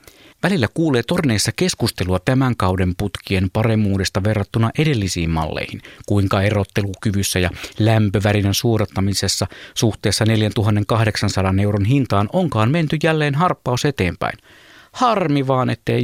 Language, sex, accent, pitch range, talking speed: Finnish, male, native, 95-125 Hz, 105 wpm